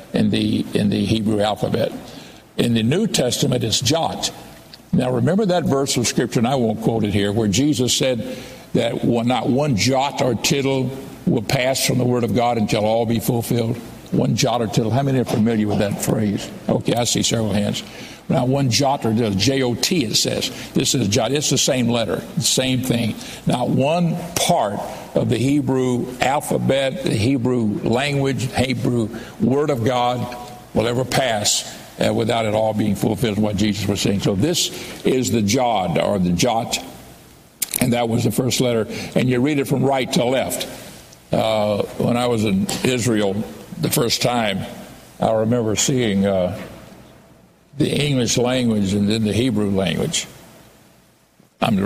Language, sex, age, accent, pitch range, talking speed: English, male, 60-79, American, 110-130 Hz, 170 wpm